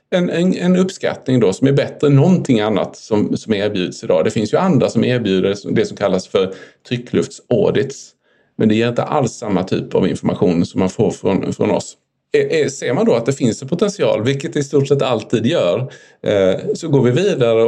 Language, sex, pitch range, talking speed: Swedish, male, 115-145 Hz, 200 wpm